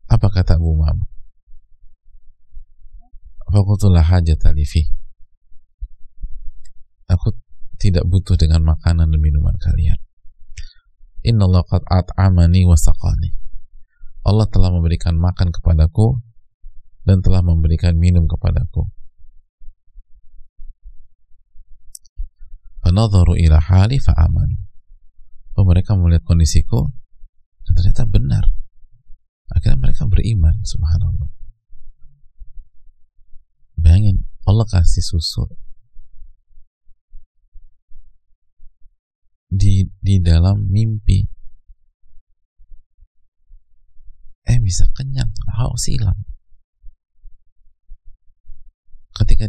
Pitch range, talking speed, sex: 75-95 Hz, 65 wpm, male